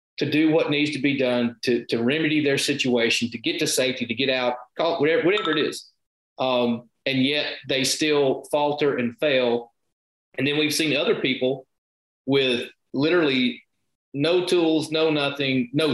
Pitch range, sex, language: 120-145 Hz, male, English